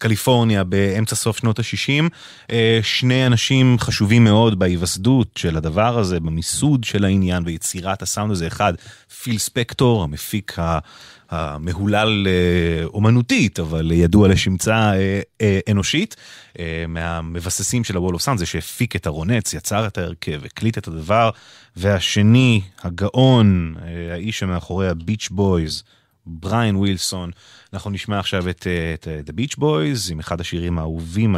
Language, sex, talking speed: English, male, 105 wpm